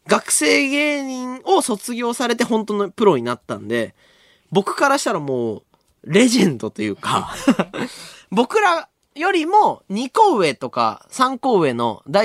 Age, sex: 20-39, male